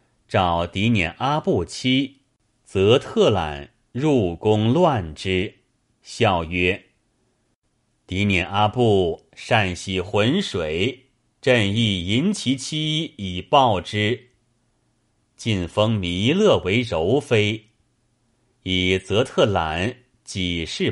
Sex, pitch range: male, 95-125 Hz